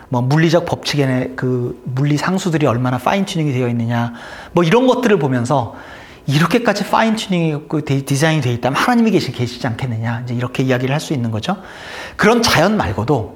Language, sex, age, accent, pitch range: Korean, male, 40-59, native, 130-185 Hz